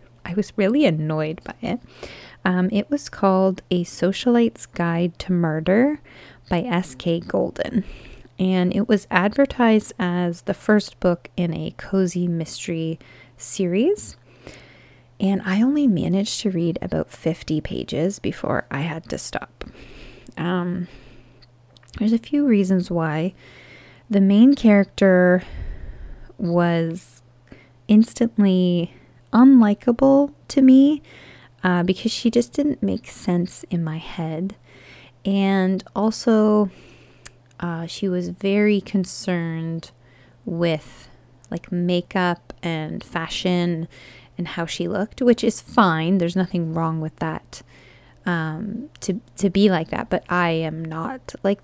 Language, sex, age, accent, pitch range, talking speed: English, female, 20-39, American, 160-210 Hz, 120 wpm